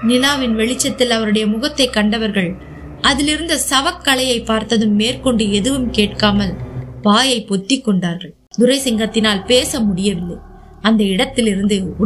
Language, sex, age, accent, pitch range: Tamil, female, 20-39, native, 195-255 Hz